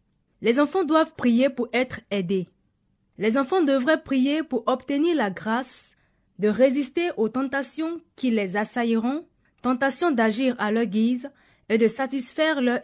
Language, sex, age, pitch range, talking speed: French, female, 20-39, 220-285 Hz, 145 wpm